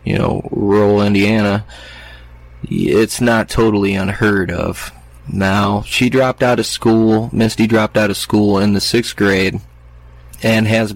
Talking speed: 140 wpm